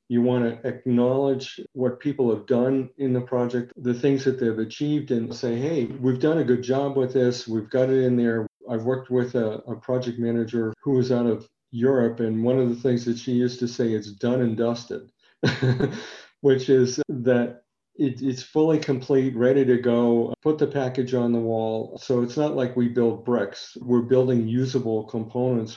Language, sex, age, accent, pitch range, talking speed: English, male, 50-69, American, 115-130 Hz, 195 wpm